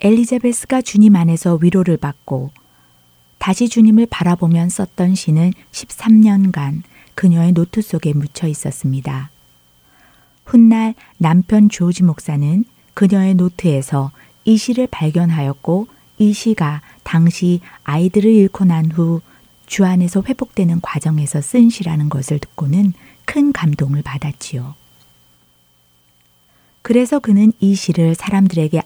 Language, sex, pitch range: Korean, female, 145-195 Hz